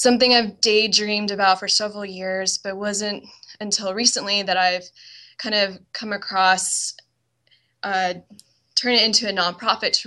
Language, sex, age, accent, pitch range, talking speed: English, female, 10-29, American, 190-225 Hz, 145 wpm